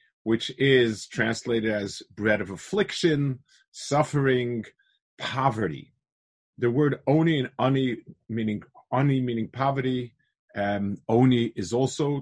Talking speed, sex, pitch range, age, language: 110 wpm, male, 110-140 Hz, 40-59, English